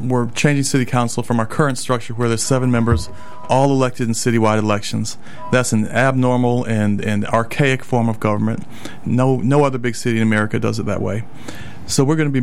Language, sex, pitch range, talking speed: English, male, 110-130 Hz, 205 wpm